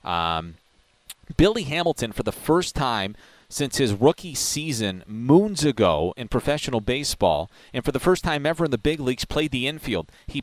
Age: 30-49